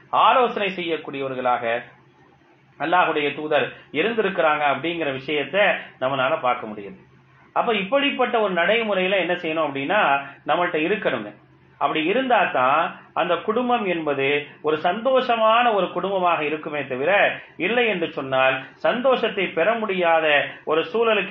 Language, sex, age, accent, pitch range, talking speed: English, male, 30-49, Indian, 145-200 Hz, 115 wpm